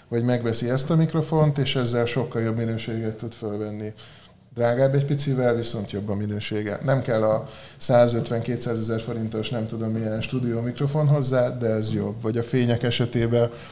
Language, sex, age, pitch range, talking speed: Hungarian, male, 20-39, 110-125 Hz, 165 wpm